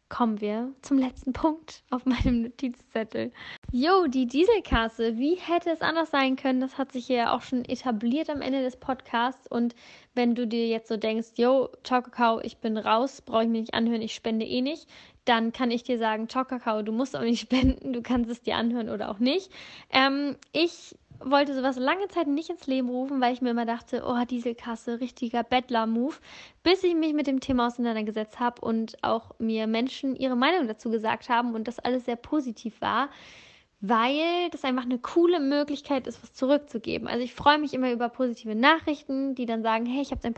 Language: German